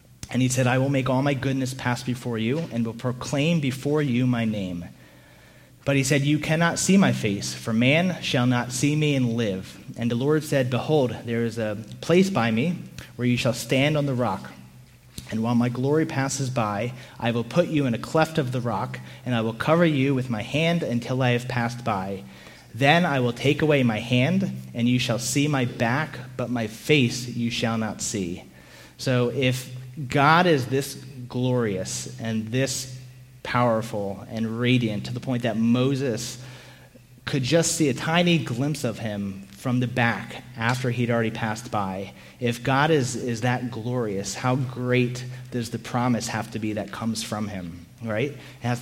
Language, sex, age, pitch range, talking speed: English, male, 30-49, 115-135 Hz, 190 wpm